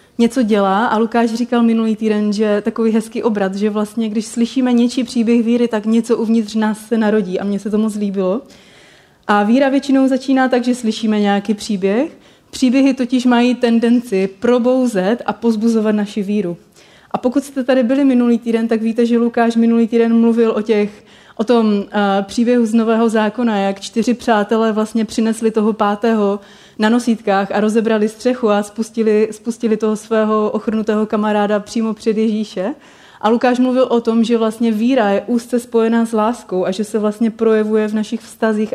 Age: 30-49